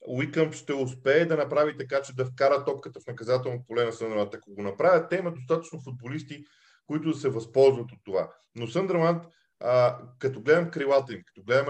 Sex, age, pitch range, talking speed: male, 40-59, 125-165 Hz, 185 wpm